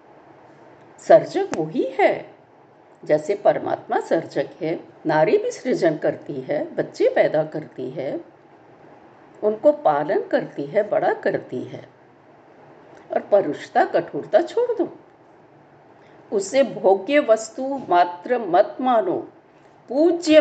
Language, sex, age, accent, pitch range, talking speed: Hindi, female, 50-69, native, 210-350 Hz, 105 wpm